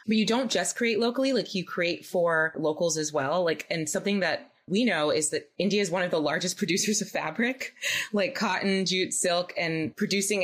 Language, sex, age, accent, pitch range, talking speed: English, female, 20-39, American, 155-200 Hz, 205 wpm